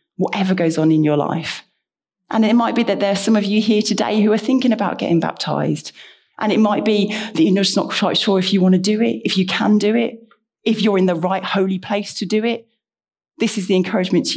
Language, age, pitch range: English, 30-49, 175-210 Hz